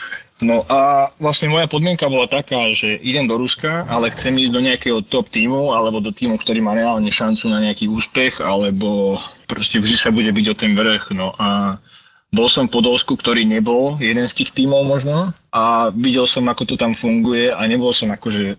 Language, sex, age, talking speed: Slovak, male, 20-39, 195 wpm